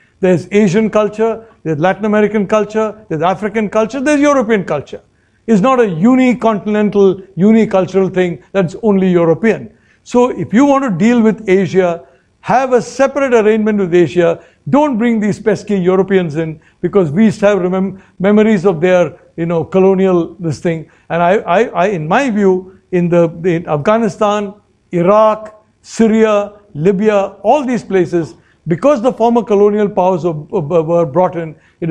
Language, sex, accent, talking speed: English, male, Indian, 150 wpm